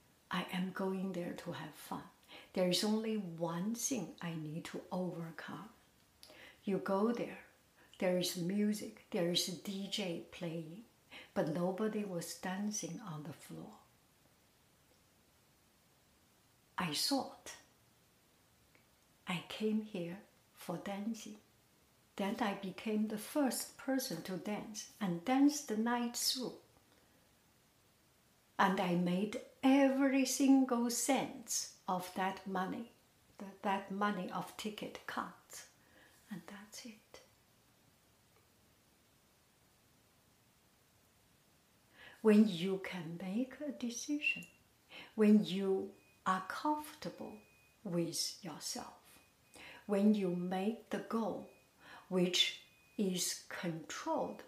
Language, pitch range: English, 180-235 Hz